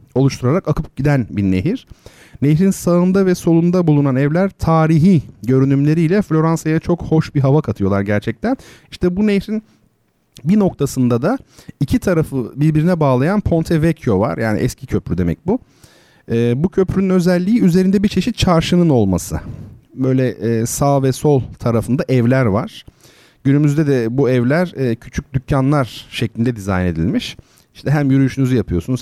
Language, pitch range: Turkish, 110-165 Hz